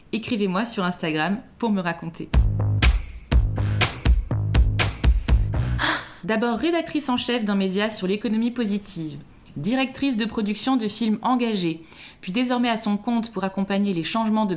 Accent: French